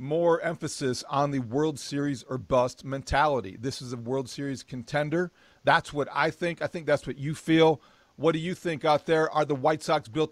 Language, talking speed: English, 210 wpm